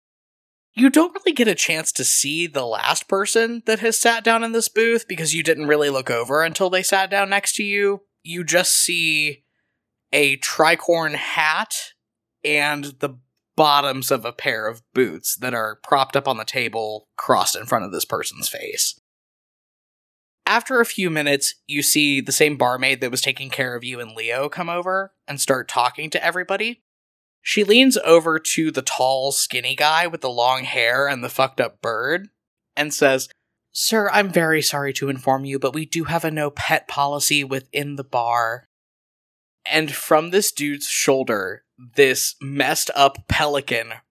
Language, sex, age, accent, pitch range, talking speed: English, male, 20-39, American, 135-180 Hz, 175 wpm